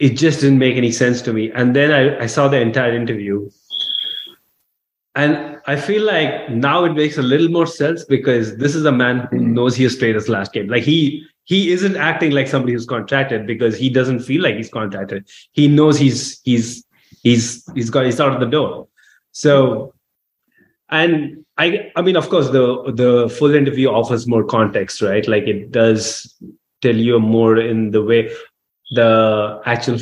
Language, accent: English, Indian